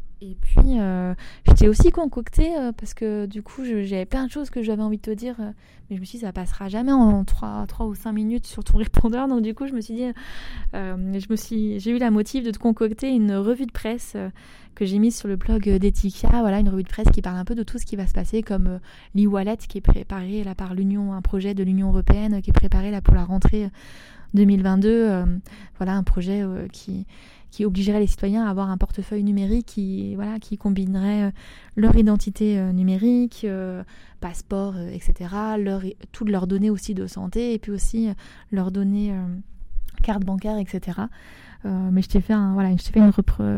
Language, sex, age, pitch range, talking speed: French, female, 20-39, 195-220 Hz, 230 wpm